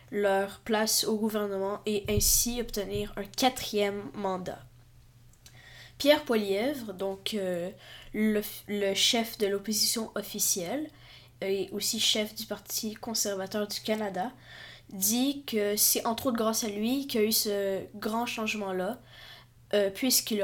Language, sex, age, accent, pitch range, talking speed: French, female, 20-39, Canadian, 195-225 Hz, 130 wpm